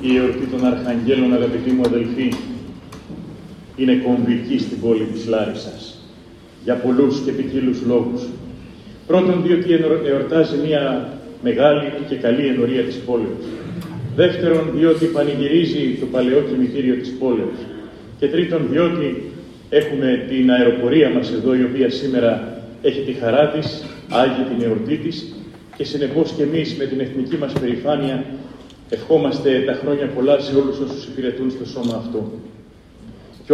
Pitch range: 125-160 Hz